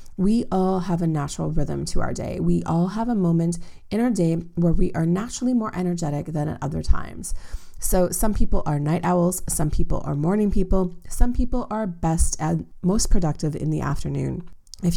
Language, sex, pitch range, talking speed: English, female, 155-185 Hz, 195 wpm